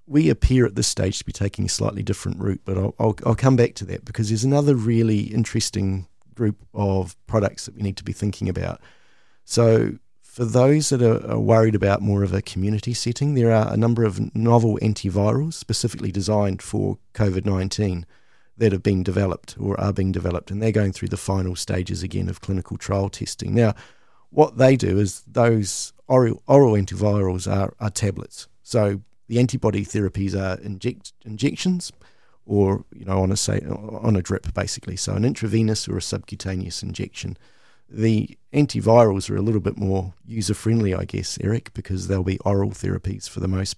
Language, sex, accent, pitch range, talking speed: English, male, Australian, 95-115 Hz, 180 wpm